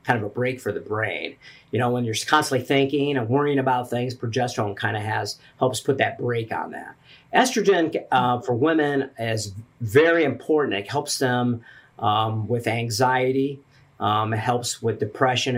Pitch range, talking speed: 115-135 Hz, 175 wpm